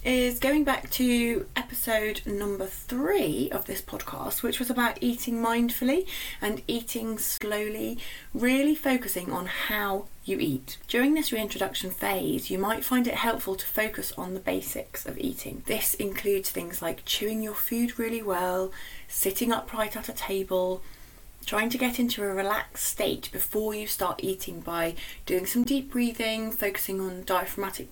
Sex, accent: female, British